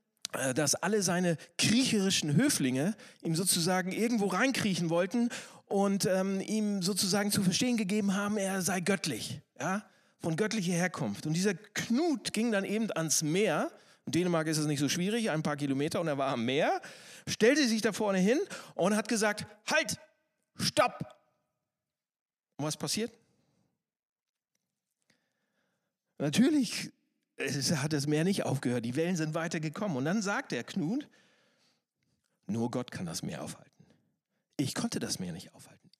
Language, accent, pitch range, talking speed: German, German, 155-215 Hz, 150 wpm